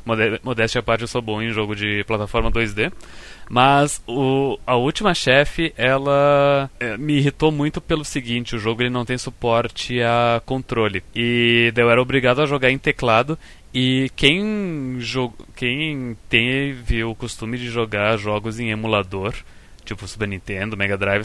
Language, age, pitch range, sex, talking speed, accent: Portuguese, 20-39, 115-150 Hz, male, 145 wpm, Brazilian